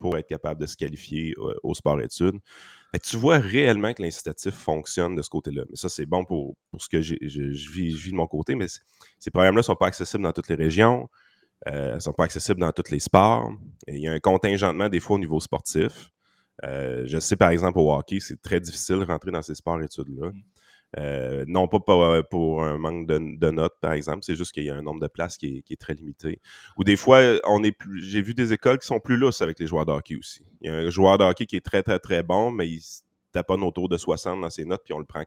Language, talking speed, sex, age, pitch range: French, 255 wpm, male, 30-49, 80-100 Hz